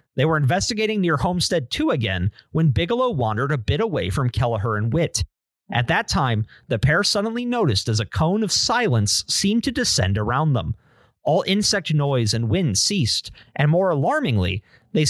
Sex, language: male, English